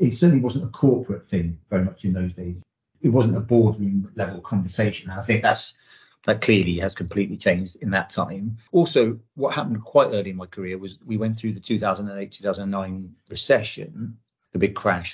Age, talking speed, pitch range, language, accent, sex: 40-59, 180 wpm, 95-115 Hz, English, British, male